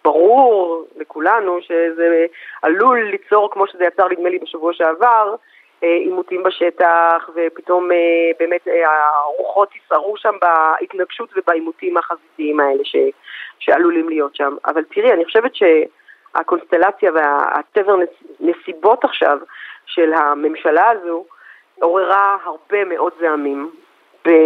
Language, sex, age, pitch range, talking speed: Hebrew, female, 40-59, 160-210 Hz, 110 wpm